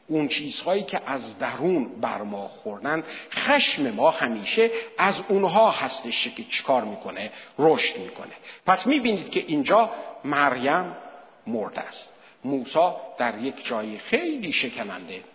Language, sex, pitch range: Persian, male, 170-280 Hz